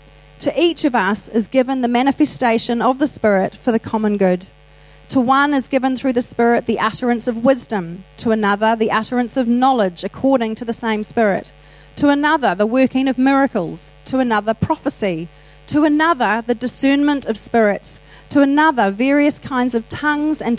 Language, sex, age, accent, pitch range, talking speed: English, female, 40-59, Australian, 200-255 Hz, 170 wpm